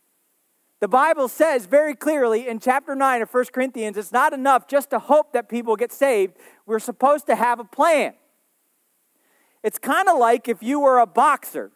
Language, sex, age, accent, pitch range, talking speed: English, male, 40-59, American, 235-325 Hz, 185 wpm